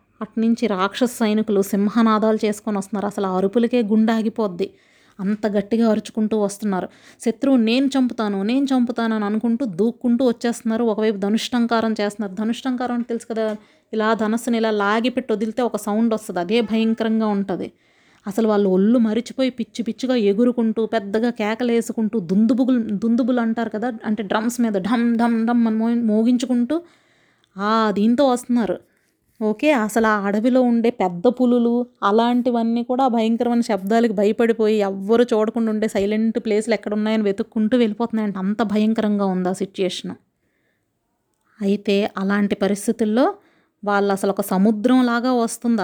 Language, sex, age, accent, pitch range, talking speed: Telugu, female, 30-49, native, 205-235 Hz, 135 wpm